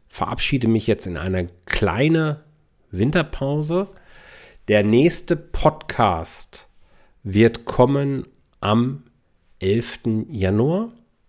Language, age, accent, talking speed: German, 40-59, German, 80 wpm